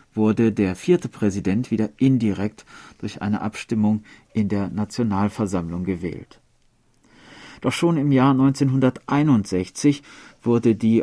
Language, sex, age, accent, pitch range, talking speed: German, male, 40-59, German, 100-120 Hz, 110 wpm